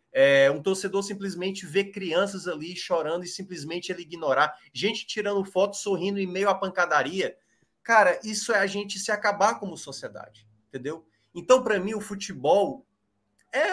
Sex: male